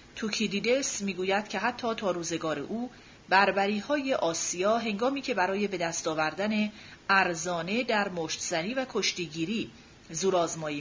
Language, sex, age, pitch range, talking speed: Persian, female, 40-59, 175-235 Hz, 130 wpm